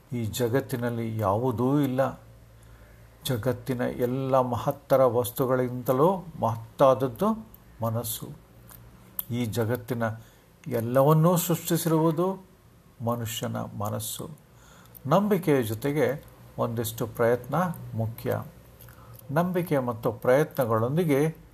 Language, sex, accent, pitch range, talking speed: Kannada, male, native, 115-150 Hz, 65 wpm